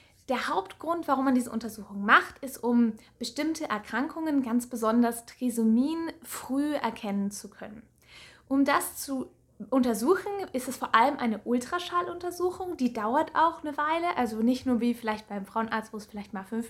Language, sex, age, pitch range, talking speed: German, female, 20-39, 220-275 Hz, 160 wpm